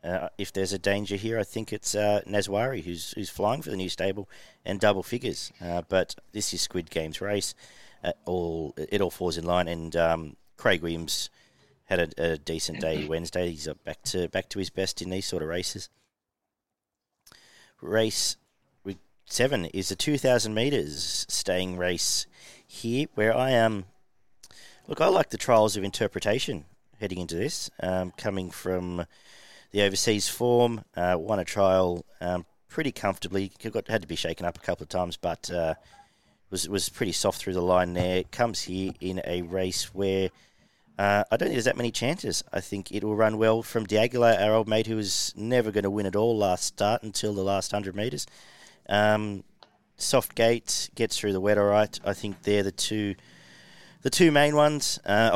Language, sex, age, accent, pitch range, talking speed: English, male, 40-59, Australian, 90-110 Hz, 190 wpm